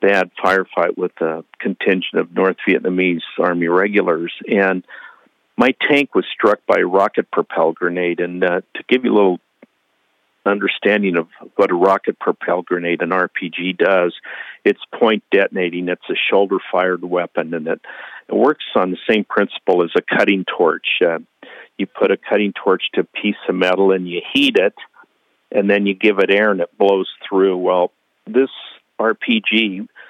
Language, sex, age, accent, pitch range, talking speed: English, male, 50-69, American, 90-100 Hz, 165 wpm